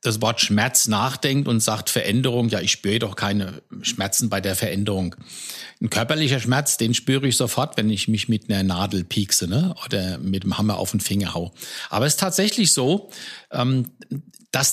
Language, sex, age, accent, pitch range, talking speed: German, male, 60-79, German, 115-165 Hz, 185 wpm